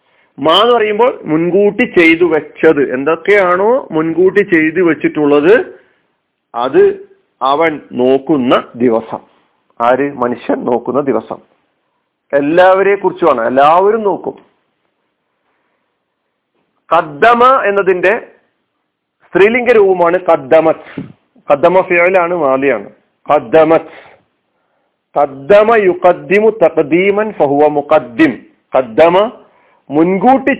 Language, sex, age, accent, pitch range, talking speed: Malayalam, male, 50-69, native, 150-205 Hz, 55 wpm